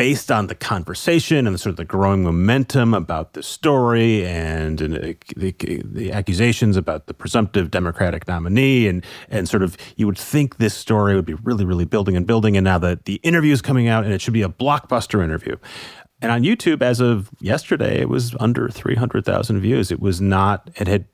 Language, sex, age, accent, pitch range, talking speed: English, male, 30-49, American, 90-115 Hz, 200 wpm